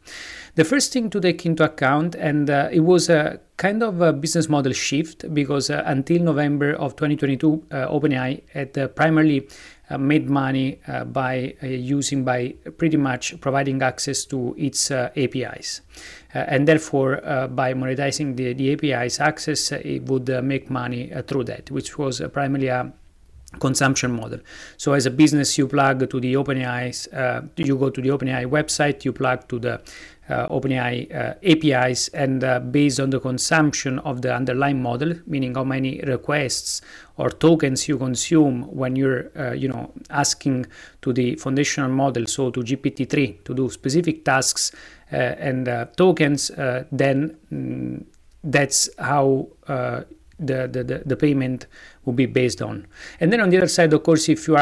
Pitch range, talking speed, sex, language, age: 130-150 Hz, 170 wpm, male, English, 30-49